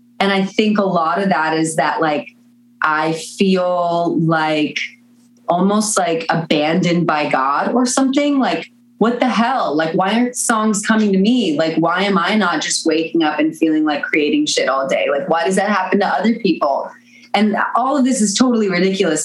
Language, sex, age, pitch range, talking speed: English, female, 20-39, 170-220 Hz, 190 wpm